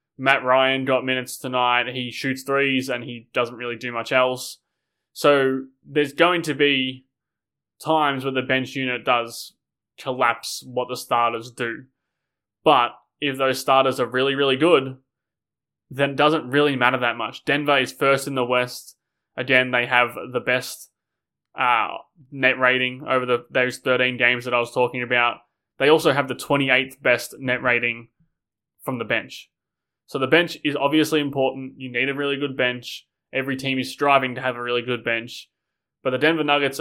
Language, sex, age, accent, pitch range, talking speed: English, male, 20-39, Australian, 120-140 Hz, 175 wpm